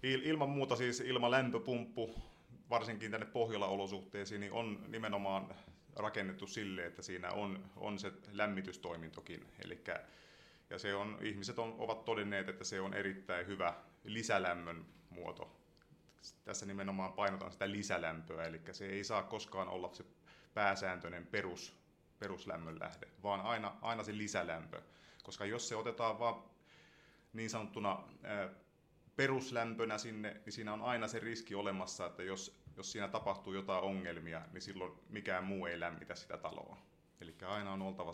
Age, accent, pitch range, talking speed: 30-49, native, 90-110 Hz, 140 wpm